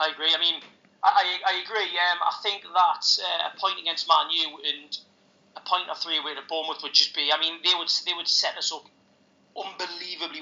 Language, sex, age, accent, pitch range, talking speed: English, male, 30-49, British, 170-220 Hz, 220 wpm